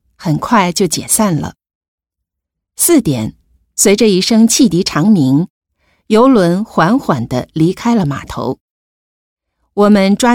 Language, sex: Japanese, female